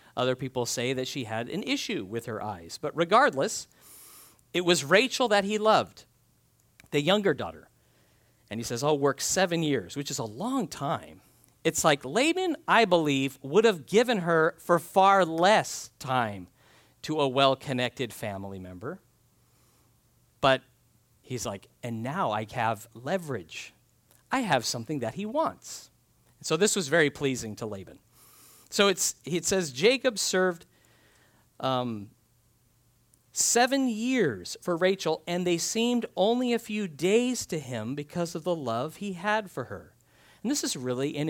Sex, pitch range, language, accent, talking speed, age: male, 120-195 Hz, English, American, 155 wpm, 40-59